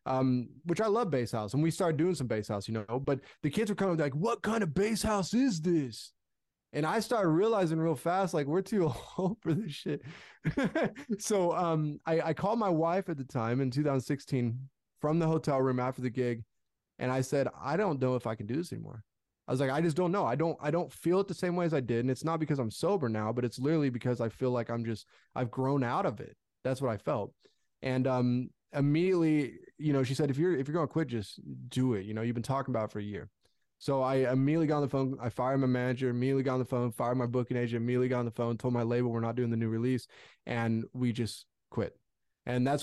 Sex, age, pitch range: male, 20-39, 120-155 Hz